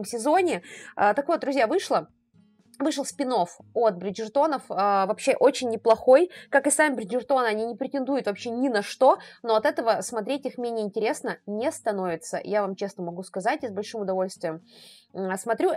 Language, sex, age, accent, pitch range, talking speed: Russian, female, 20-39, native, 200-275 Hz, 160 wpm